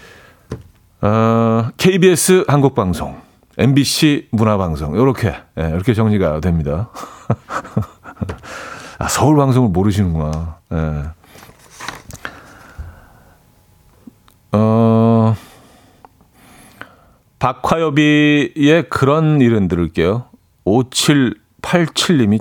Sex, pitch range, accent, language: male, 95-145 Hz, native, Korean